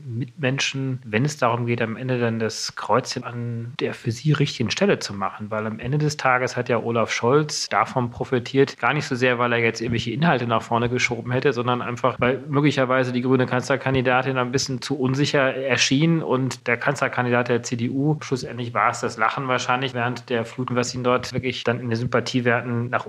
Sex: male